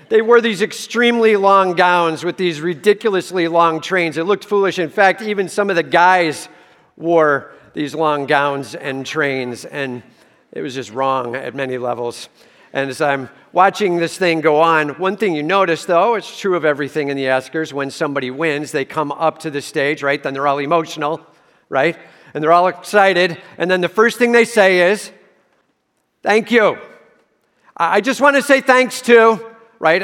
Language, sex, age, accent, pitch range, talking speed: English, male, 50-69, American, 140-190 Hz, 185 wpm